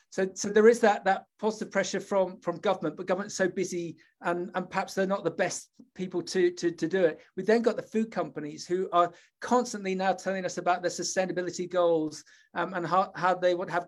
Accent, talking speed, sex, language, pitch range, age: British, 220 wpm, male, English, 175-200 Hz, 40-59